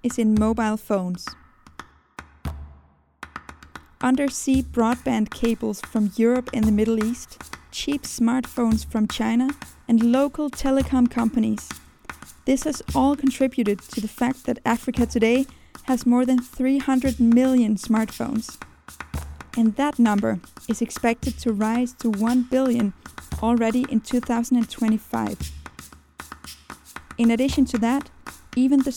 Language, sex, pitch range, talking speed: English, female, 220-255 Hz, 115 wpm